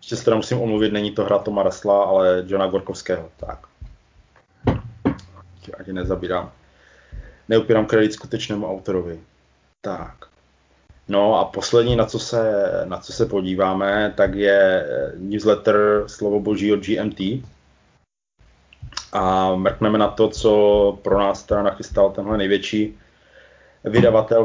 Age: 30-49